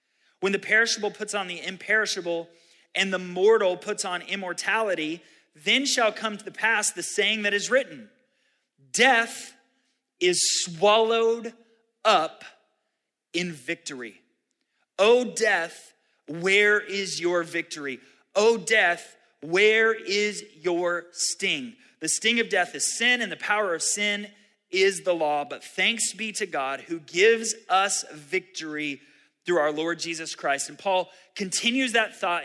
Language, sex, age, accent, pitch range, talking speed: English, male, 30-49, American, 165-220 Hz, 140 wpm